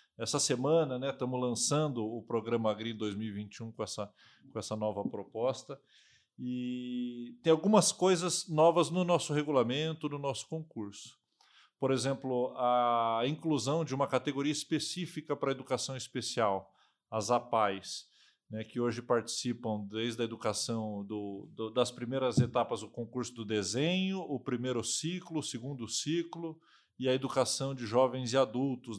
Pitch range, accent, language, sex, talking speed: 120-150 Hz, Brazilian, Portuguese, male, 145 wpm